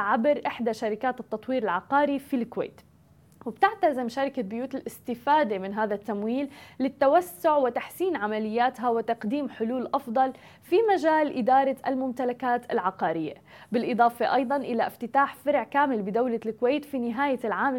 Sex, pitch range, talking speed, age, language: female, 225-270 Hz, 120 wpm, 20-39, Arabic